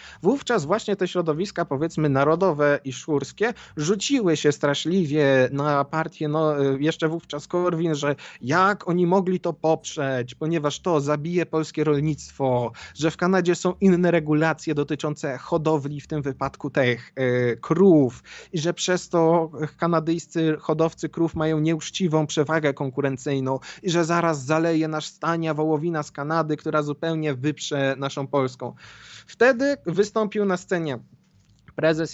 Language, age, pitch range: Polish, 20-39, 140-165 Hz